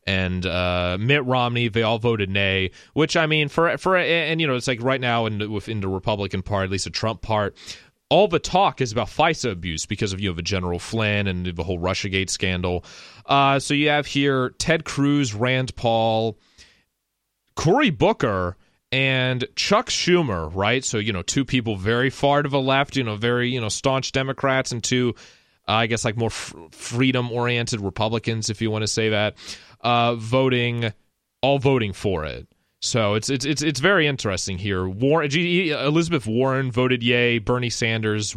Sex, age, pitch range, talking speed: male, 30-49, 100-130 Hz, 190 wpm